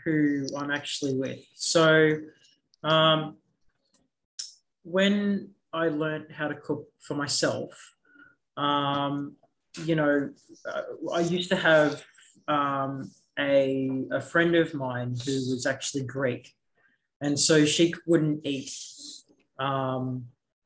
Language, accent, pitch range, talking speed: English, Australian, 135-160 Hz, 105 wpm